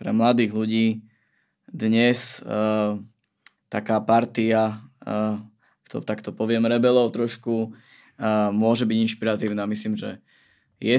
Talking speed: 115 wpm